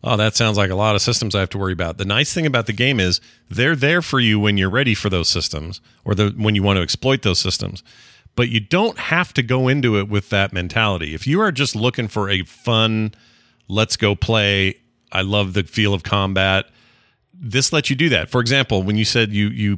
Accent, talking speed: American, 240 wpm